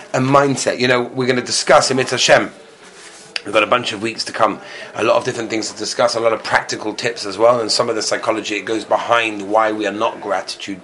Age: 30-49